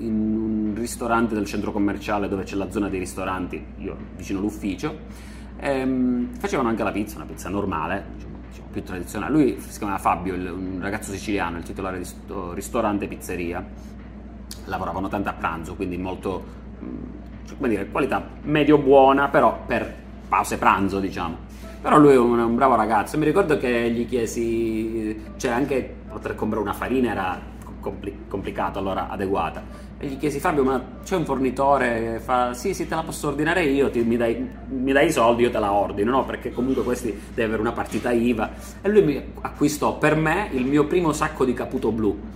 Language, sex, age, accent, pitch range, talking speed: Italian, male, 30-49, native, 105-135 Hz, 180 wpm